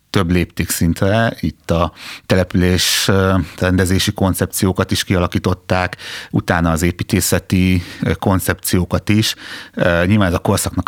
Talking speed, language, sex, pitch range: 105 wpm, Hungarian, male, 90-100 Hz